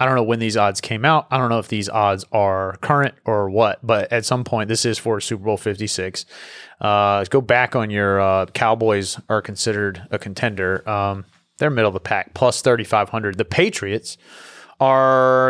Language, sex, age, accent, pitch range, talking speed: English, male, 30-49, American, 115-160 Hz, 200 wpm